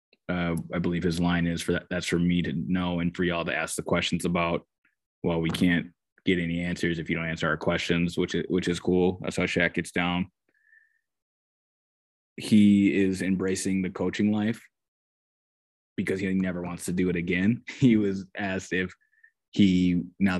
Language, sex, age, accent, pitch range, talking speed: English, male, 20-39, American, 80-90 Hz, 185 wpm